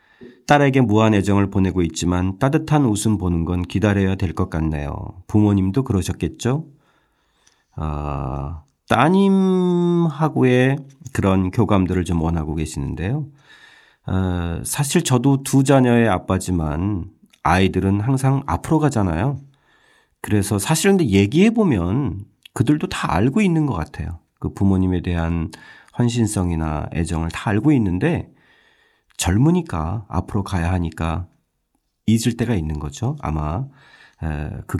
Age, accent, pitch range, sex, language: 40-59, native, 85-125 Hz, male, Korean